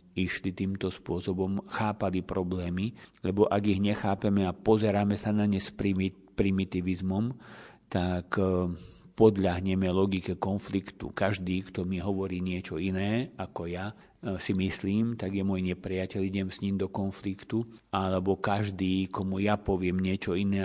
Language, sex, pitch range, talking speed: Slovak, male, 95-100 Hz, 135 wpm